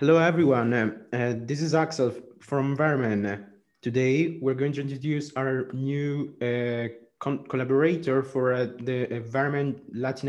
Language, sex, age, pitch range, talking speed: English, male, 30-49, 125-145 Hz, 130 wpm